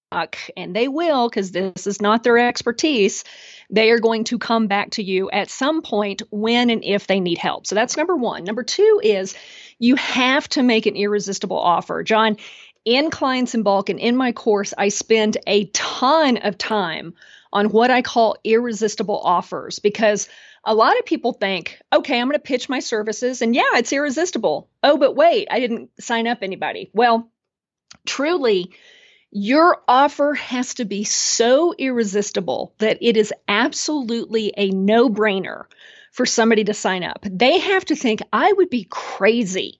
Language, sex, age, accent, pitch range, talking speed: English, female, 40-59, American, 205-260 Hz, 170 wpm